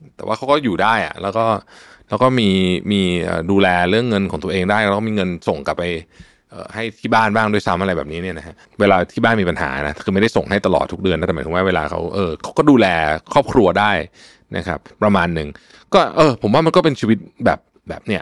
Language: Thai